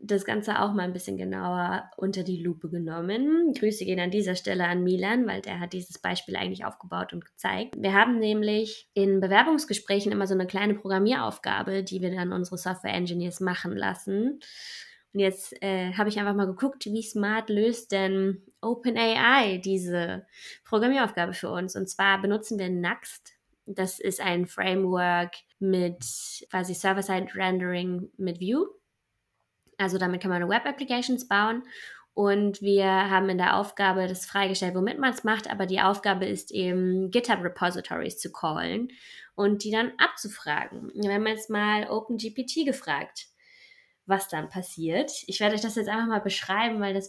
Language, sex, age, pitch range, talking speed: German, female, 20-39, 185-230 Hz, 160 wpm